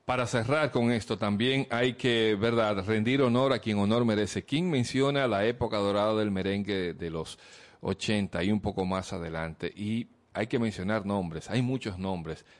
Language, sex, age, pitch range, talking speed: Spanish, male, 40-59, 100-130 Hz, 175 wpm